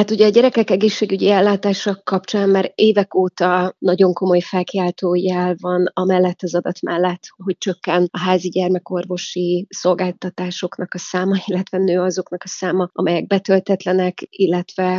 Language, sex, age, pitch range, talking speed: Hungarian, female, 30-49, 175-190 Hz, 140 wpm